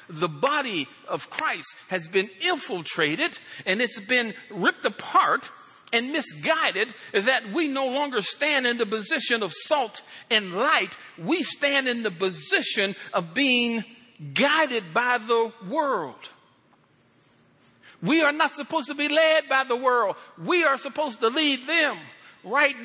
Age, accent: 50-69, American